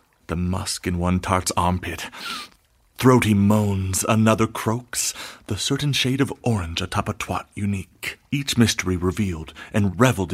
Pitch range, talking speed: 90-115 Hz, 140 wpm